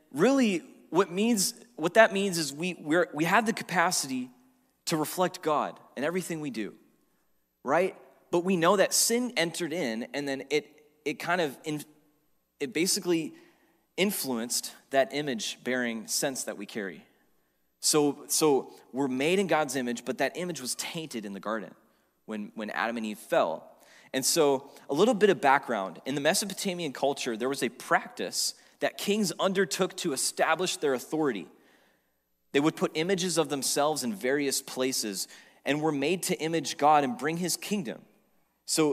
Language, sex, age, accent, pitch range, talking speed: English, male, 20-39, American, 120-175 Hz, 165 wpm